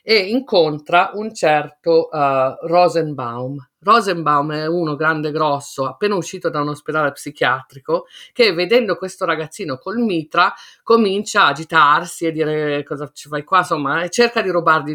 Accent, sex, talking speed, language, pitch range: native, female, 150 wpm, Italian, 145-185 Hz